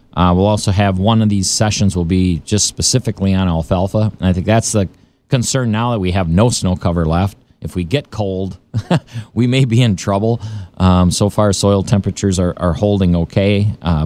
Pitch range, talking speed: 90-110 Hz, 200 wpm